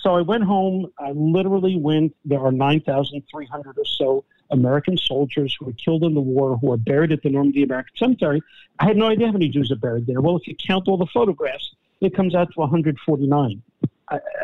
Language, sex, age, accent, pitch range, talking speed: English, male, 50-69, American, 140-175 Hz, 210 wpm